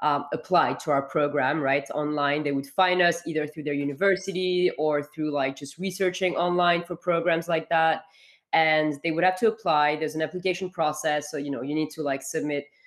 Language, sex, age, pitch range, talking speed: English, female, 20-39, 150-175 Hz, 200 wpm